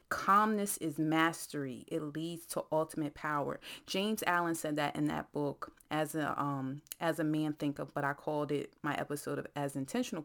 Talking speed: 185 wpm